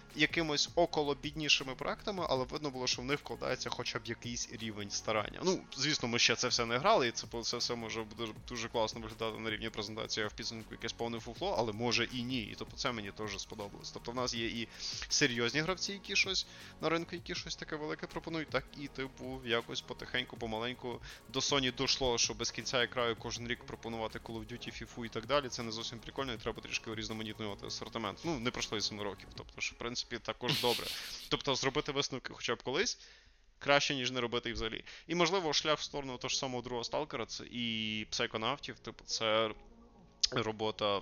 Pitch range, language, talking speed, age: 110-140 Hz, Russian, 200 wpm, 20-39